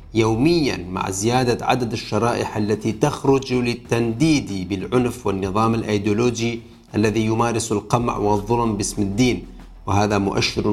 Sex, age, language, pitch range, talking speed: male, 40-59, Arabic, 100-120 Hz, 105 wpm